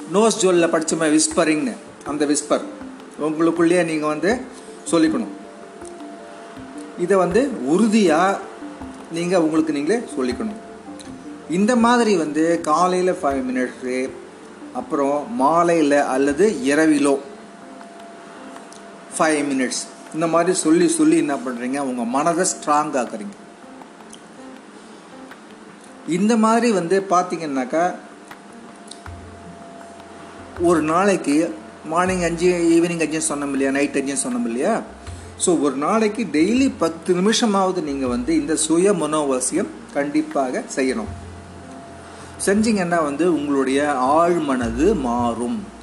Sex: male